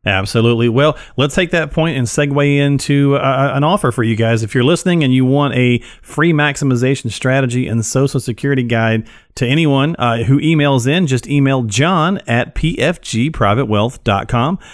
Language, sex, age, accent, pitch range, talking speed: English, male, 40-59, American, 115-140 Hz, 165 wpm